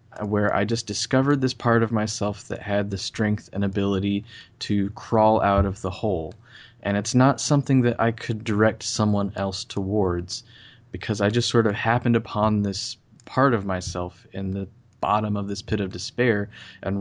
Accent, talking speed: American, 180 wpm